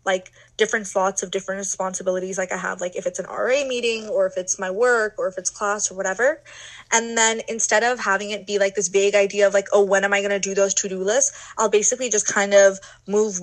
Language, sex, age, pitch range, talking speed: English, female, 20-39, 190-215 Hz, 240 wpm